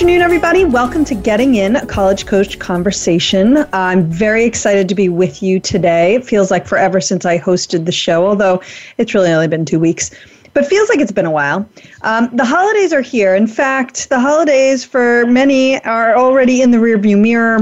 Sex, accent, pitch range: female, American, 190-260 Hz